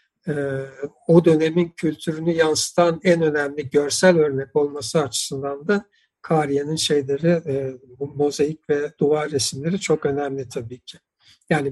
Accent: native